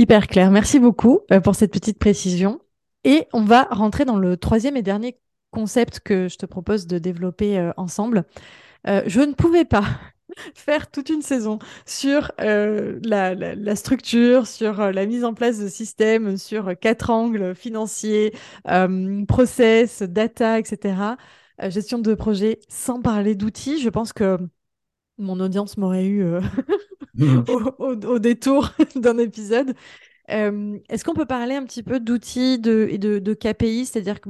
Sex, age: female, 20-39